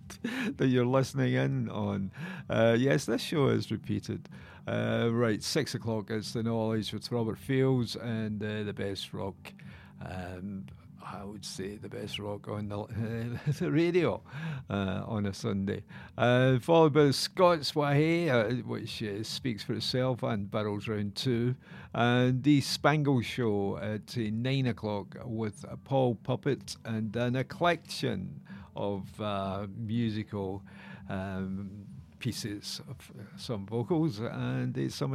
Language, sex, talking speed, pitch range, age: English, male, 140 wpm, 105-135 Hz, 50-69